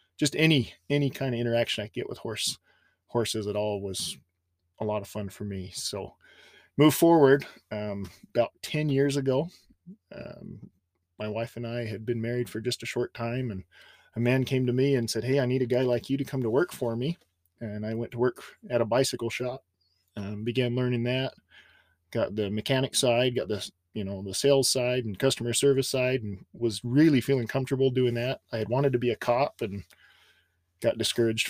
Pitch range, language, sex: 105-130 Hz, English, male